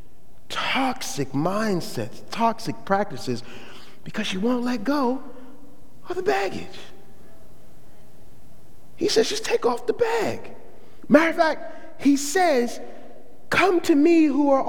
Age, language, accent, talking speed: 30-49, English, American, 120 wpm